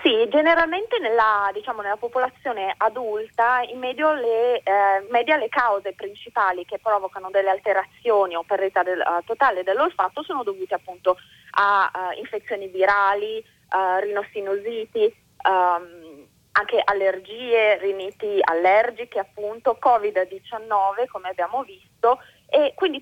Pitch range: 185-240 Hz